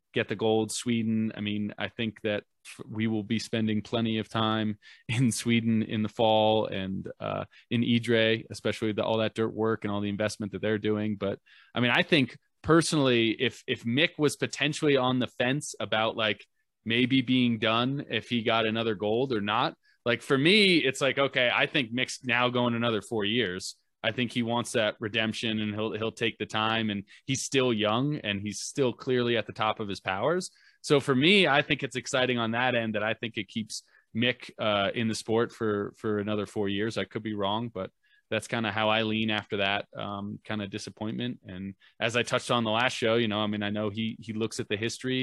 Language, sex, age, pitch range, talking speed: English, male, 20-39, 105-120 Hz, 220 wpm